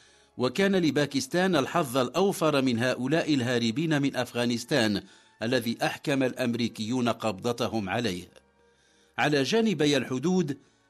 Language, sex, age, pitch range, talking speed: English, male, 50-69, 115-150 Hz, 95 wpm